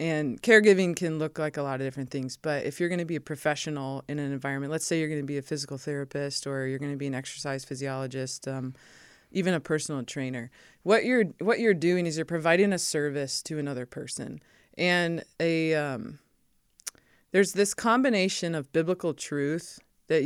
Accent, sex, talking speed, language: American, female, 195 wpm, English